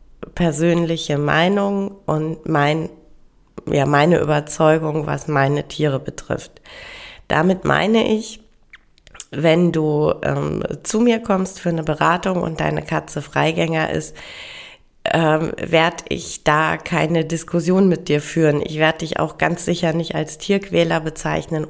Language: German